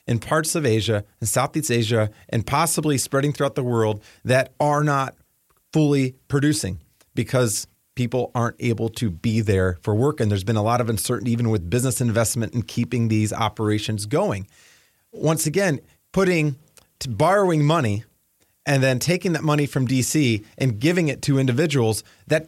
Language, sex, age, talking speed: English, male, 30-49, 165 wpm